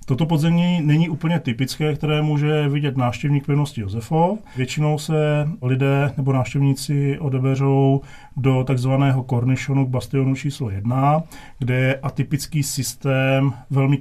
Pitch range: 125-145 Hz